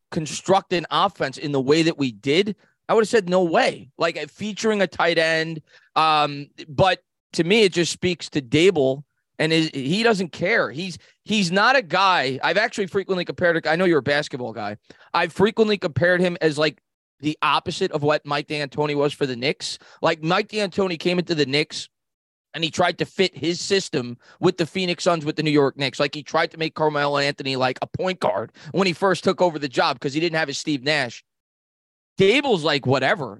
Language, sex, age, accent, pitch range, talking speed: English, male, 20-39, American, 145-185 Hz, 210 wpm